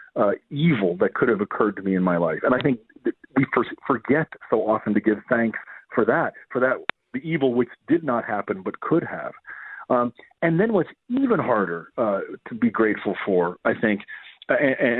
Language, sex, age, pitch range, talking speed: English, male, 40-59, 110-150 Hz, 190 wpm